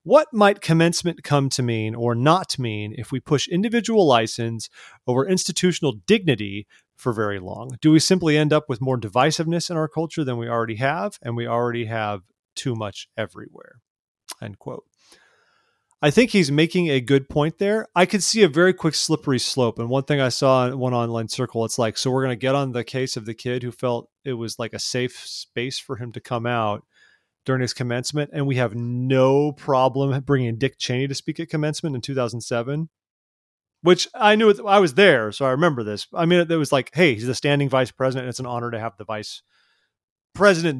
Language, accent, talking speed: English, American, 210 wpm